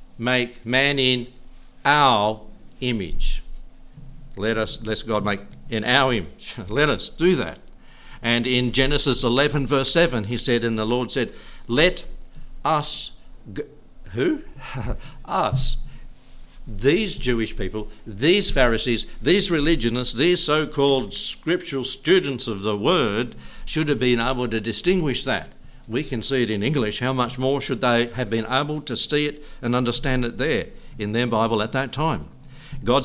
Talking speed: 150 wpm